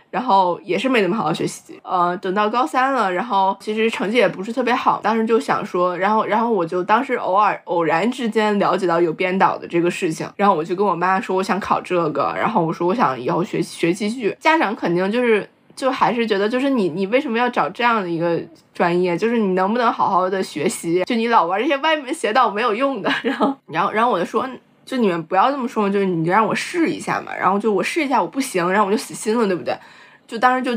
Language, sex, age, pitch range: Chinese, female, 20-39, 180-240 Hz